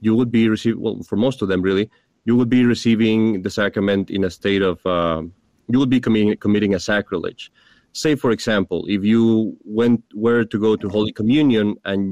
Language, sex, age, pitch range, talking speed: English, male, 30-49, 100-120 Hz, 205 wpm